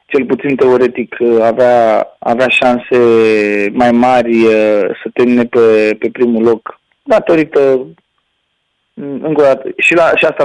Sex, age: male, 40-59